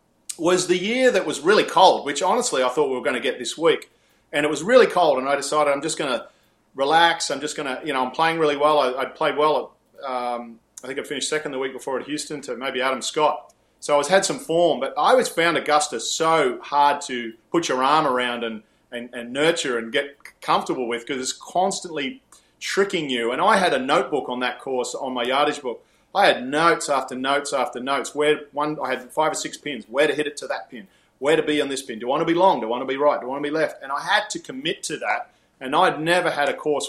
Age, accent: 30-49, Australian